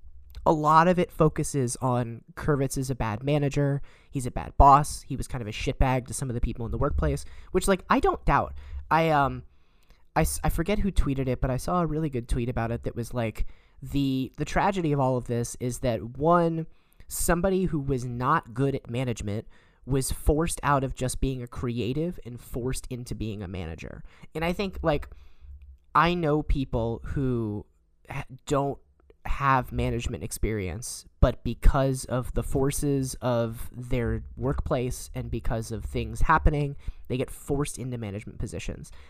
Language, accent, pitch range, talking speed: English, American, 115-140 Hz, 180 wpm